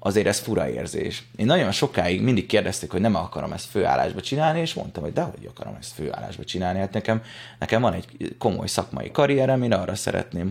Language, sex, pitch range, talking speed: Hungarian, male, 90-125 Hz, 200 wpm